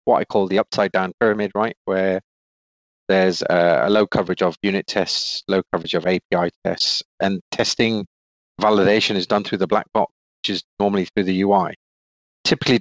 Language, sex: English, male